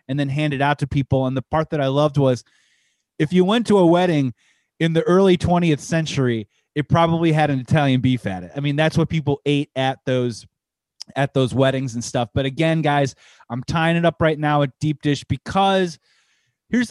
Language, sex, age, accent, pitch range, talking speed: English, male, 30-49, American, 135-170 Hz, 215 wpm